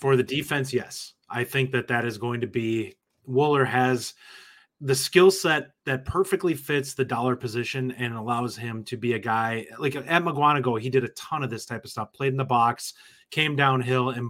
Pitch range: 120-135 Hz